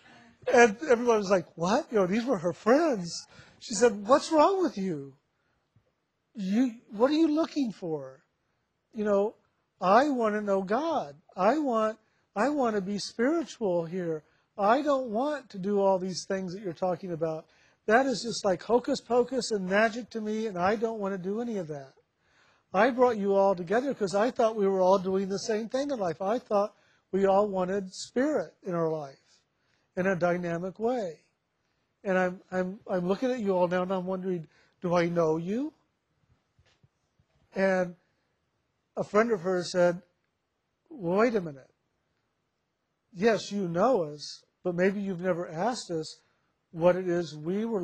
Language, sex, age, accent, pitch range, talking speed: English, male, 50-69, American, 180-230 Hz, 175 wpm